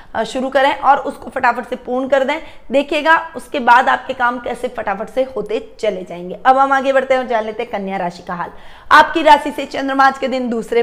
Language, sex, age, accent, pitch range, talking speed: Hindi, female, 20-39, native, 225-280 Hz, 225 wpm